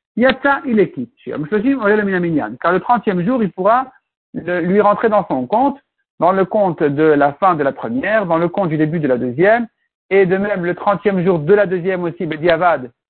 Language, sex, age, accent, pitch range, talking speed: French, male, 60-79, French, 180-240 Hz, 195 wpm